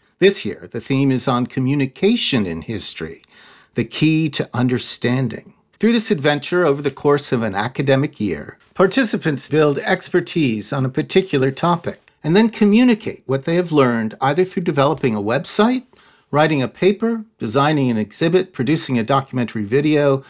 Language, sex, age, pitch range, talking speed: English, male, 50-69, 125-160 Hz, 155 wpm